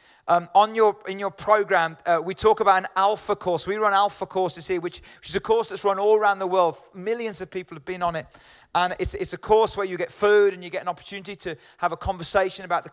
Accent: British